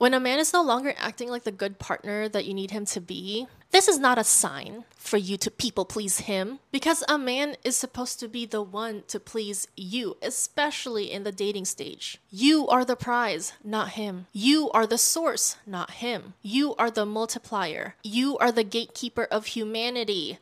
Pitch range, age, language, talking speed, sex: 190-230 Hz, 20-39, English, 195 wpm, female